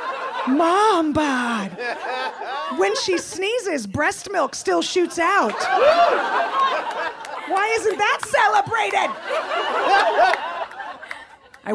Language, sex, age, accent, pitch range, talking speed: English, female, 30-49, American, 230-380 Hz, 75 wpm